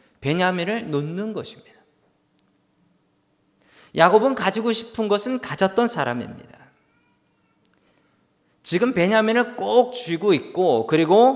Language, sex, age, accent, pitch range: Korean, male, 40-59, native, 135-195 Hz